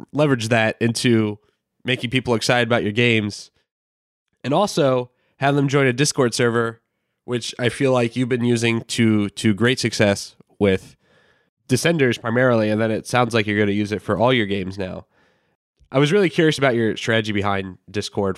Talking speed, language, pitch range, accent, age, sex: 180 wpm, English, 95-120 Hz, American, 20-39, male